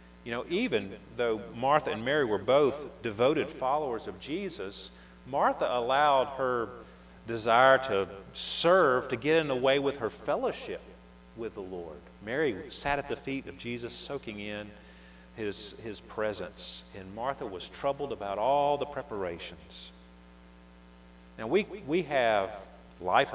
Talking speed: 140 wpm